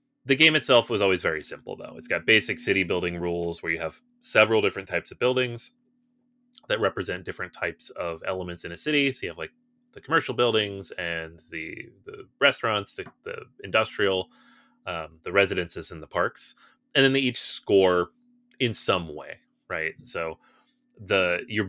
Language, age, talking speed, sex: English, 30-49, 170 wpm, male